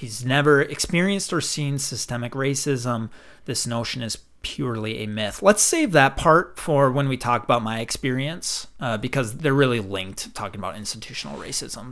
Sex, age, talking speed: male, 30-49, 165 wpm